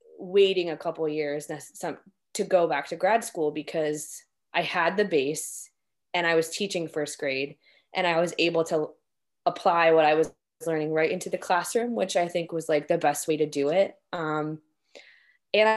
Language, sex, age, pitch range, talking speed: English, female, 20-39, 160-210 Hz, 185 wpm